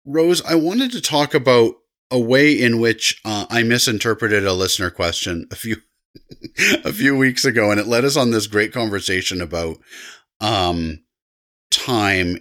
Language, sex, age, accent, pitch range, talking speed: English, male, 30-49, American, 90-115 Hz, 160 wpm